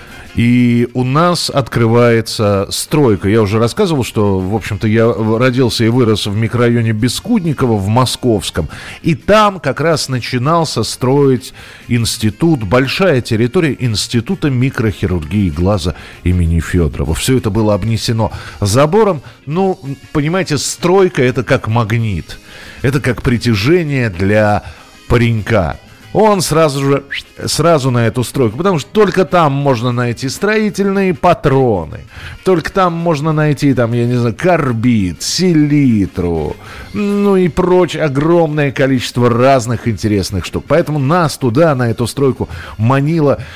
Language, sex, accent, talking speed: Russian, male, native, 125 wpm